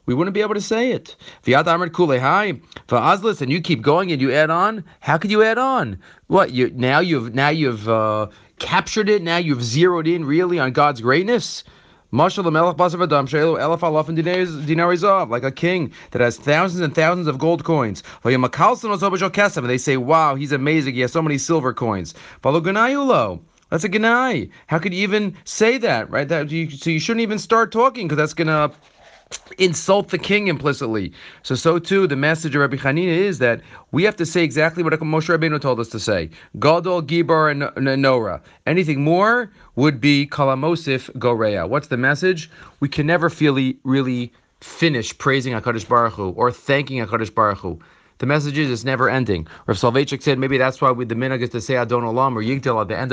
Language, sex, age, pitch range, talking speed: English, male, 30-49, 125-170 Hz, 185 wpm